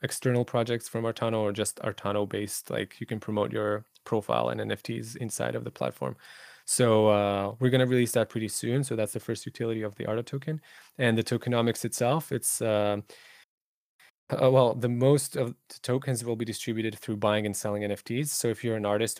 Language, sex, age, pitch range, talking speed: English, male, 20-39, 105-115 Hz, 200 wpm